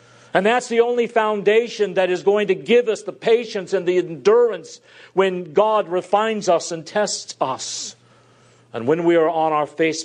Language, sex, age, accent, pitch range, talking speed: English, male, 50-69, American, 120-180 Hz, 180 wpm